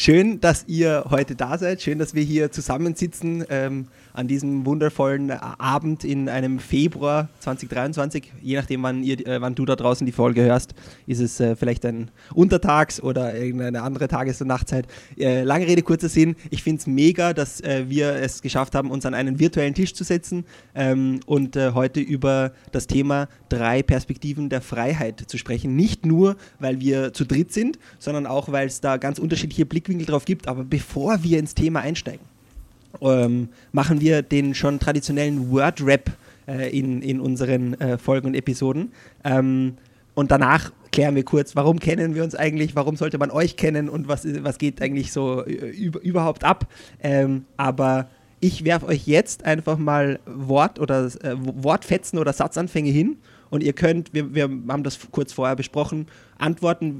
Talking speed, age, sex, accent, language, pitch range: 180 wpm, 20-39, male, German, German, 130-155 Hz